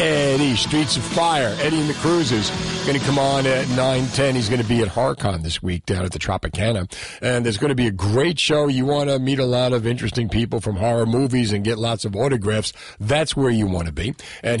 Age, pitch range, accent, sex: 50-69, 105-130 Hz, American, male